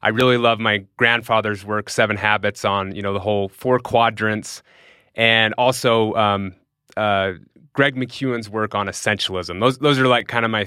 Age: 30-49